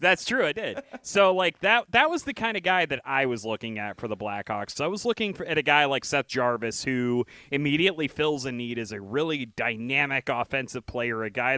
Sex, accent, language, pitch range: male, American, English, 120-145 Hz